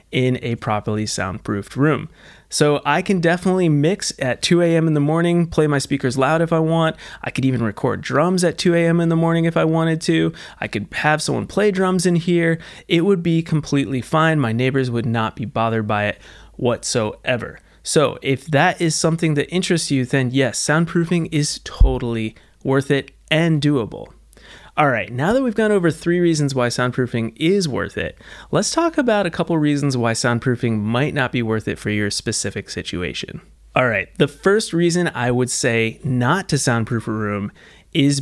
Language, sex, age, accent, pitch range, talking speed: English, male, 30-49, American, 125-170 Hz, 190 wpm